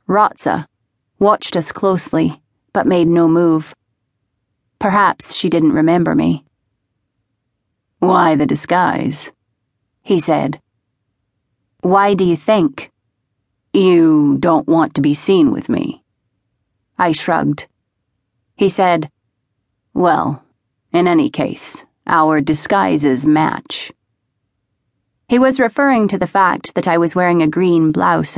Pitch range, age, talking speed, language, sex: 120-185 Hz, 30-49, 115 wpm, English, female